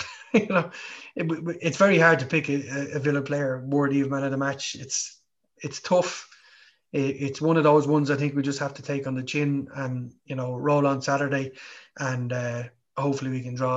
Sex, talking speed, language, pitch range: male, 215 wpm, English, 130-150 Hz